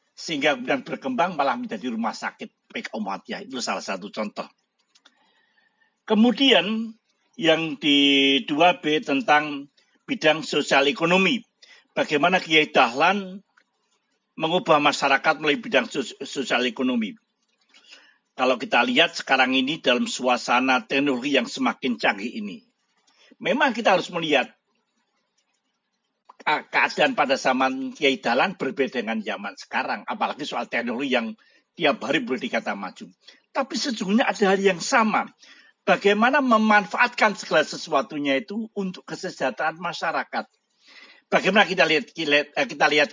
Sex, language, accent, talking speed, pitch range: male, Indonesian, native, 115 wpm, 140-215 Hz